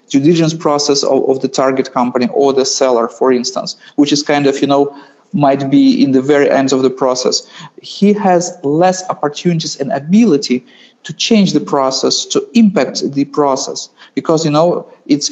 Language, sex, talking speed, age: English, male, 175 wpm, 40-59